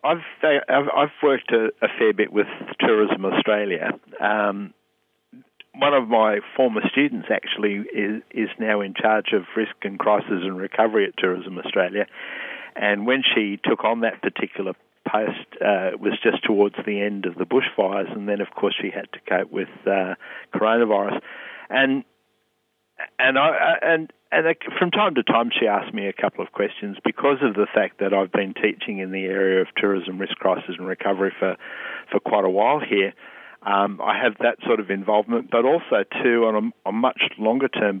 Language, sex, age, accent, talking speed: English, male, 60-79, Australian, 180 wpm